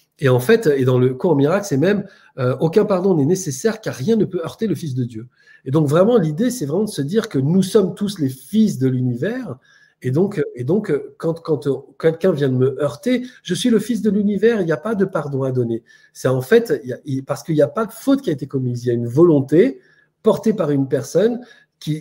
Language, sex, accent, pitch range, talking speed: French, male, French, 130-185 Hz, 255 wpm